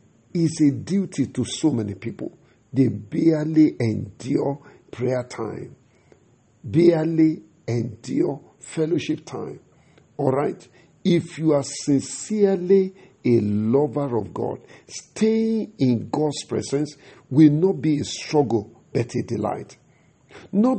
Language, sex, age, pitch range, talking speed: English, male, 50-69, 120-160 Hz, 110 wpm